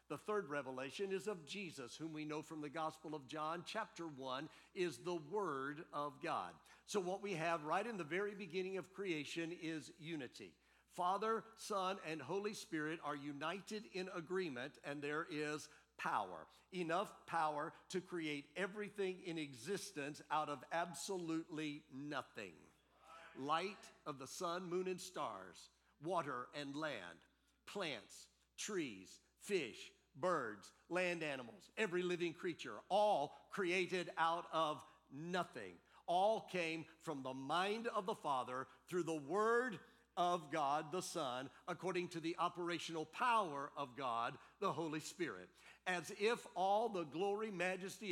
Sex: male